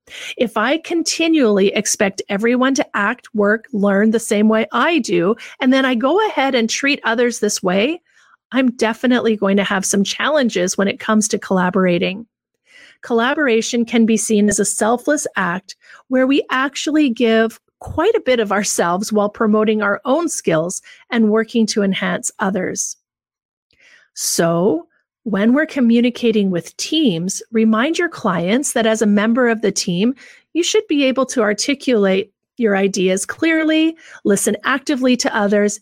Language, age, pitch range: English, 40-59, 205-270 Hz